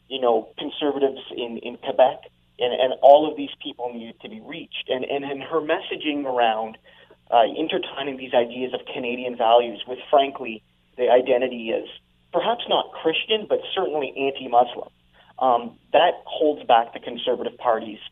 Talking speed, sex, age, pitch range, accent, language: 160 wpm, male, 30-49, 120-180 Hz, American, English